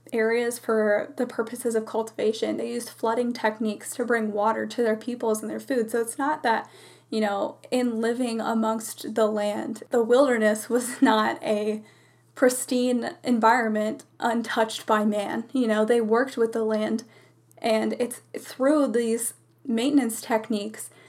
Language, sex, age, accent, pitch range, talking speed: English, female, 10-29, American, 220-245 Hz, 150 wpm